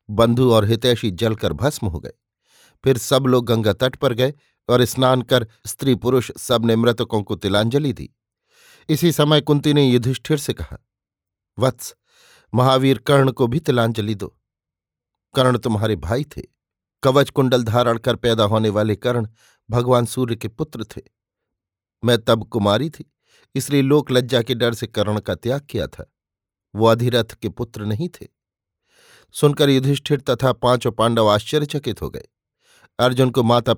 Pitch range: 110-130 Hz